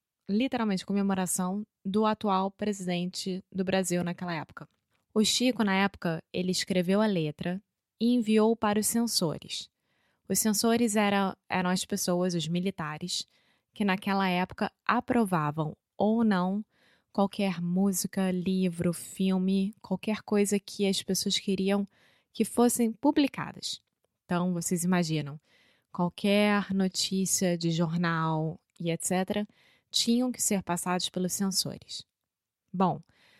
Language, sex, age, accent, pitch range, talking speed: Portuguese, female, 20-39, Brazilian, 180-220 Hz, 115 wpm